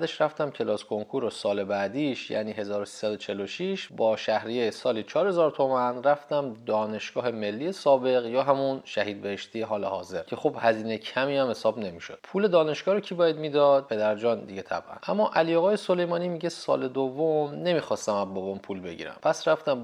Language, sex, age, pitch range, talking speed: Persian, male, 30-49, 110-160 Hz, 155 wpm